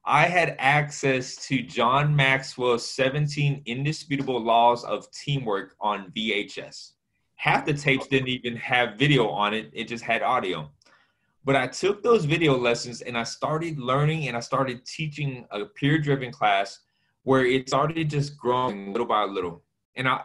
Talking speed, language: 155 wpm, English